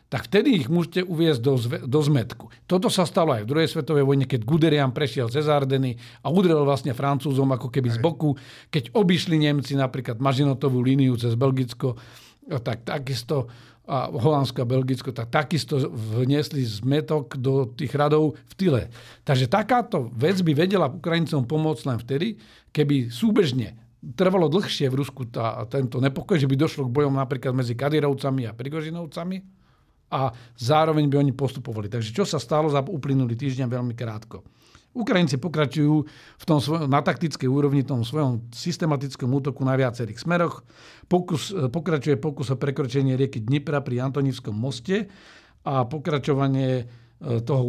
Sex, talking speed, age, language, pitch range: male, 150 wpm, 50-69, Slovak, 130-155 Hz